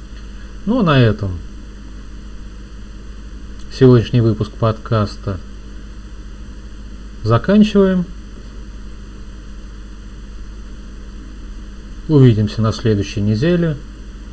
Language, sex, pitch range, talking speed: Russian, male, 100-120 Hz, 50 wpm